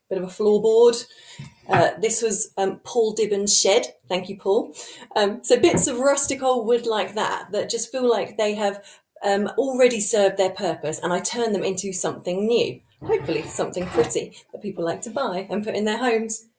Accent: British